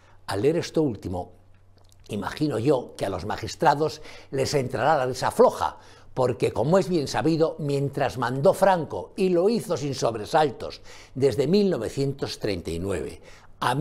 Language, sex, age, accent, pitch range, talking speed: Spanish, male, 60-79, Spanish, 120-175 Hz, 125 wpm